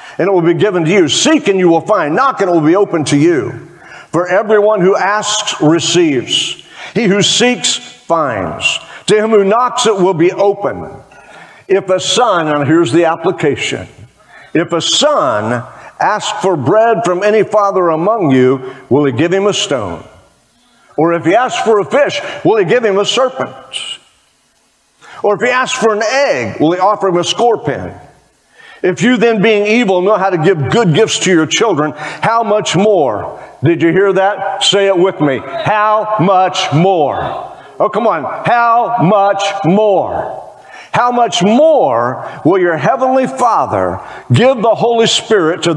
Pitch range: 170-225 Hz